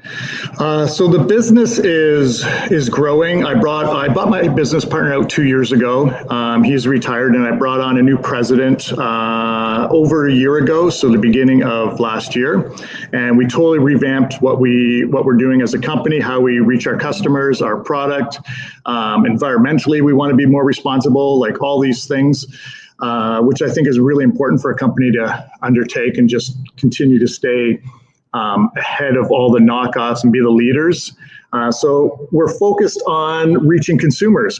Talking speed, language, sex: 180 wpm, English, male